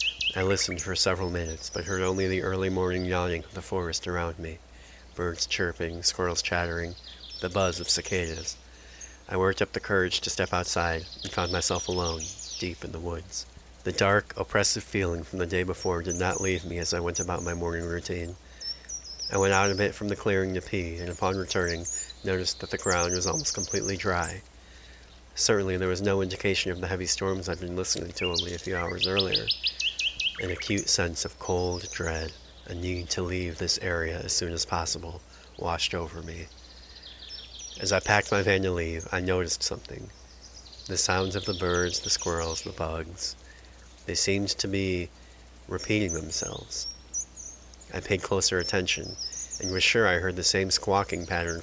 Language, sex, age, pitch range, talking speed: English, male, 30-49, 80-95 Hz, 180 wpm